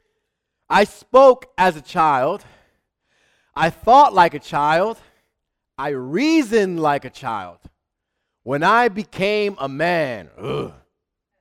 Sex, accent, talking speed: male, American, 105 wpm